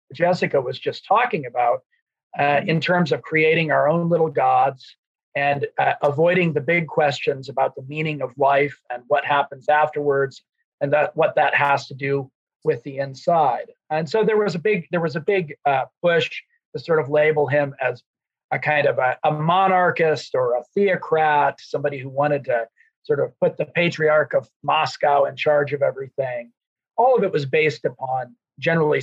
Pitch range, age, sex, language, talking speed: 145-195 Hz, 40-59, male, English, 180 wpm